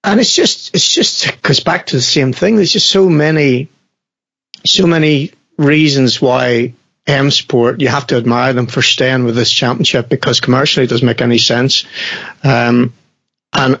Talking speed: 170 wpm